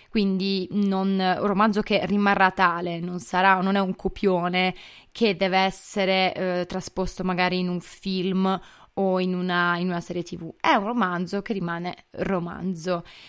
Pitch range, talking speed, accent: 180-205 Hz, 160 wpm, native